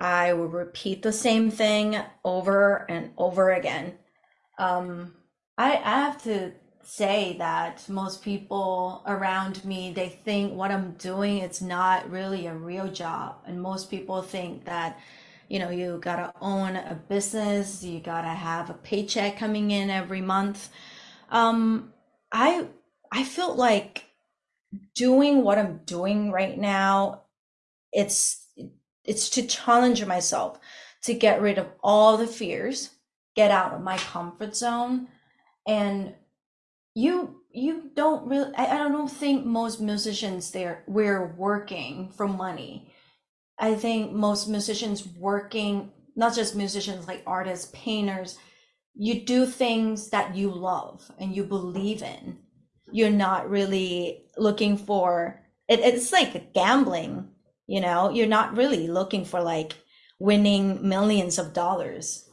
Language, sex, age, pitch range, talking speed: English, female, 20-39, 185-220 Hz, 135 wpm